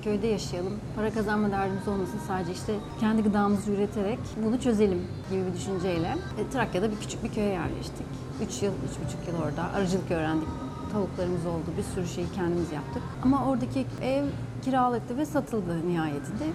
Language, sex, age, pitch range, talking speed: Turkish, female, 30-49, 185-255 Hz, 165 wpm